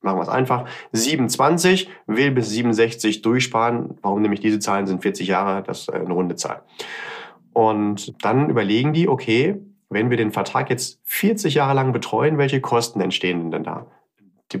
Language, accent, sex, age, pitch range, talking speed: German, German, male, 30-49, 105-135 Hz, 170 wpm